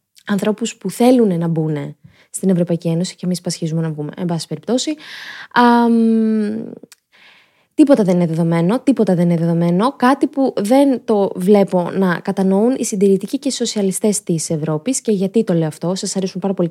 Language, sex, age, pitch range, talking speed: Greek, female, 20-39, 180-240 Hz, 175 wpm